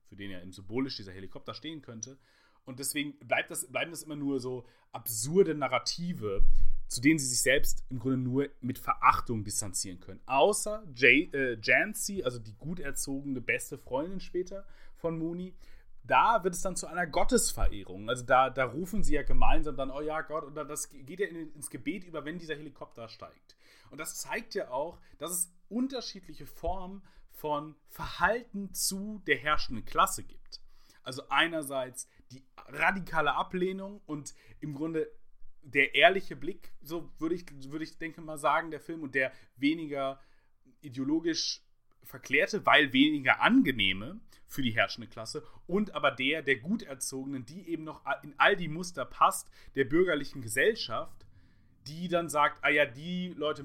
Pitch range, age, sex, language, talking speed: 130-175 Hz, 30-49, male, German, 165 wpm